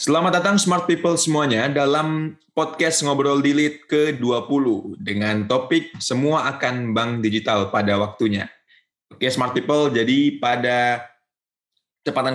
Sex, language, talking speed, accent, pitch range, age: male, Indonesian, 115 wpm, native, 105-130 Hz, 20-39